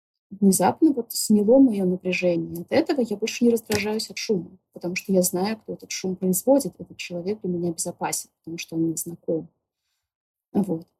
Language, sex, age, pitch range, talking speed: Russian, female, 20-39, 170-210 Hz, 175 wpm